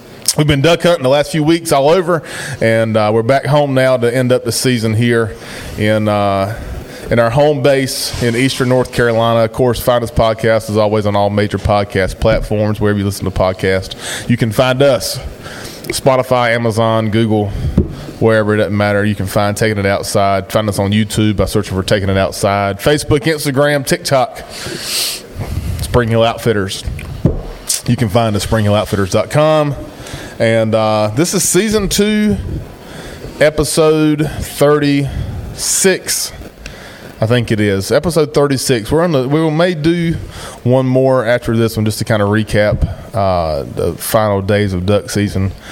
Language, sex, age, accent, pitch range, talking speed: English, male, 20-39, American, 100-130 Hz, 165 wpm